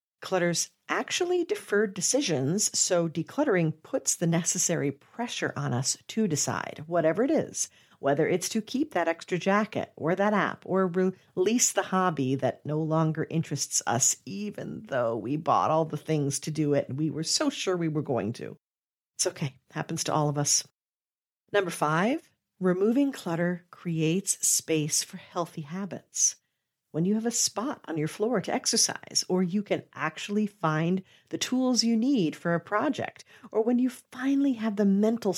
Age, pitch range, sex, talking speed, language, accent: 50-69, 155-205 Hz, female, 170 wpm, English, American